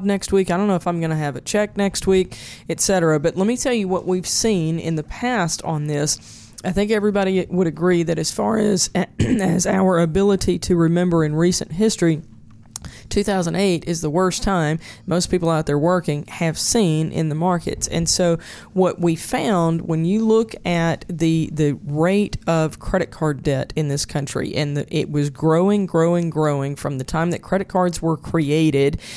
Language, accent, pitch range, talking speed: English, American, 155-190 Hz, 195 wpm